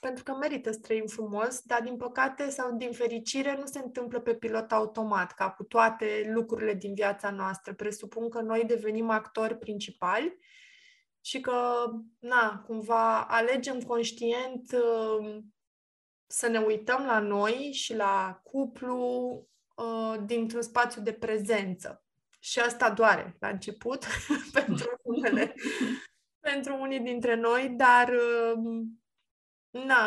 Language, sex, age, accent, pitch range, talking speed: Romanian, female, 20-39, native, 220-250 Hz, 120 wpm